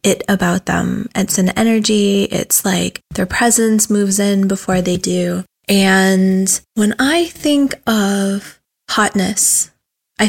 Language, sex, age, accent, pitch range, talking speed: English, female, 20-39, American, 185-215 Hz, 130 wpm